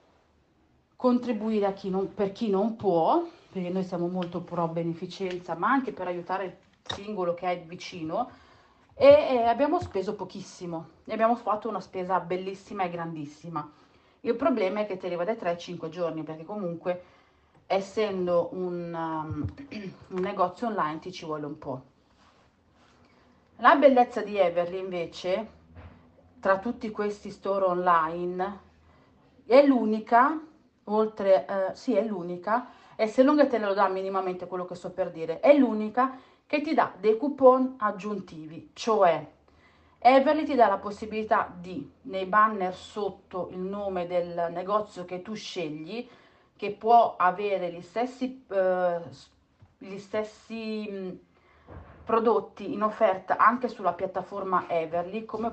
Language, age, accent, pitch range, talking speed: Italian, 40-59, native, 175-220 Hz, 145 wpm